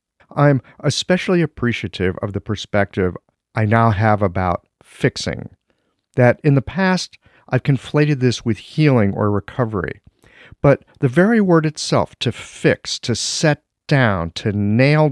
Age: 50-69